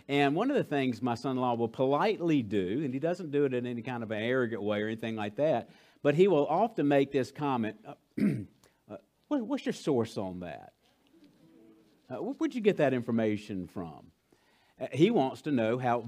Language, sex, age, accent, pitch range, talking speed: English, male, 50-69, American, 115-150 Hz, 200 wpm